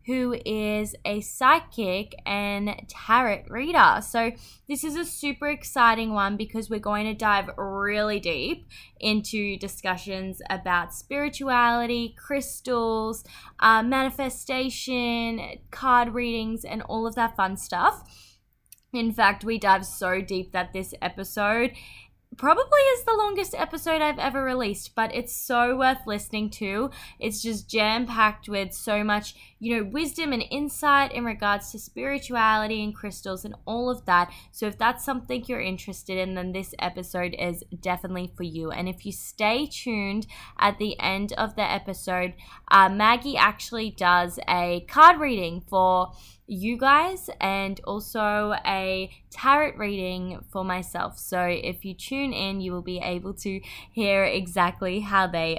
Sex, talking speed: female, 145 wpm